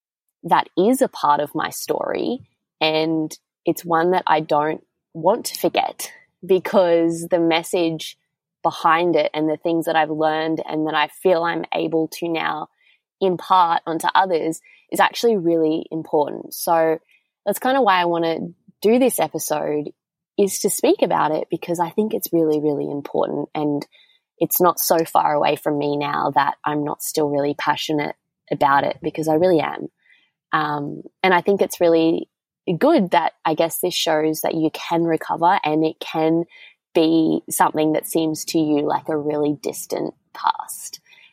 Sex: female